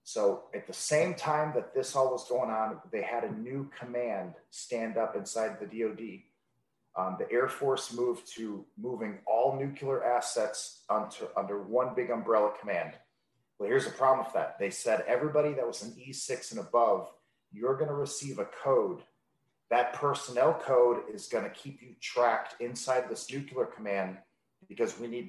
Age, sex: 30-49, male